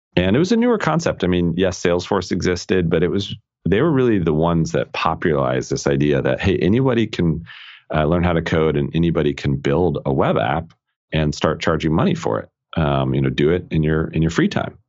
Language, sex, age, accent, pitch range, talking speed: English, male, 40-59, American, 70-85 Hz, 225 wpm